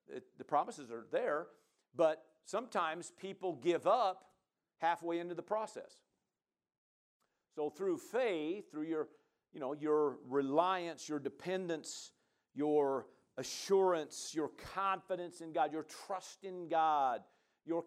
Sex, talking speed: male, 120 wpm